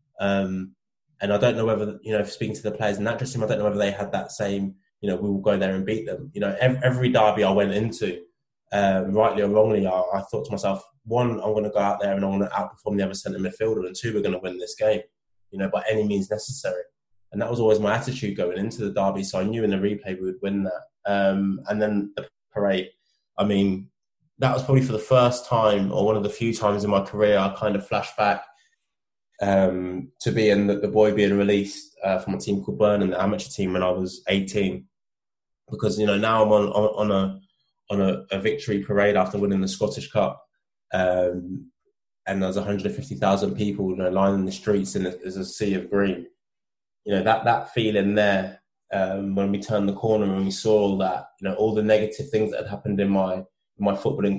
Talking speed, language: 240 wpm, English